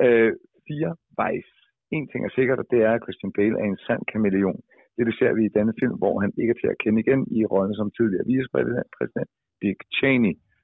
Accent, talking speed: native, 225 wpm